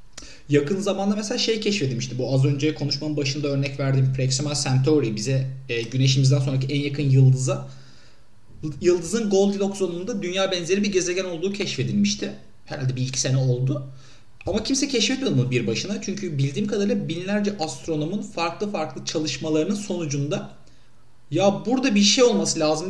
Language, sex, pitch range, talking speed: Turkish, male, 135-200 Hz, 145 wpm